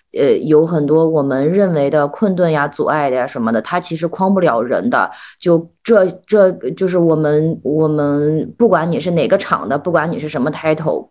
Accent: native